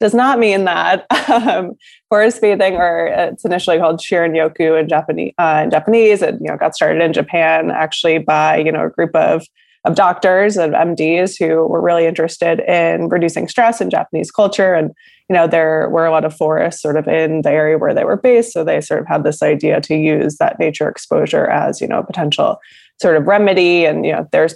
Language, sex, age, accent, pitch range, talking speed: English, female, 20-39, American, 155-185 Hz, 215 wpm